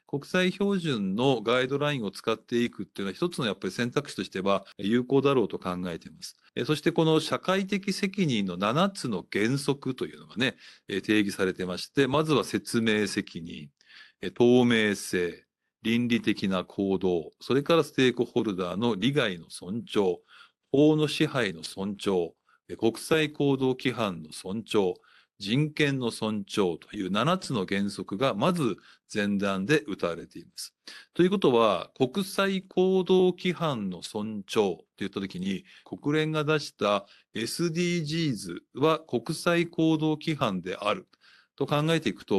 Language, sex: Japanese, male